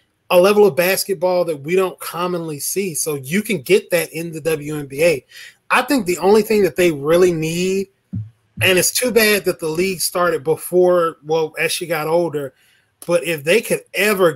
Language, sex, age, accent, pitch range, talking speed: English, male, 20-39, American, 145-190 Hz, 190 wpm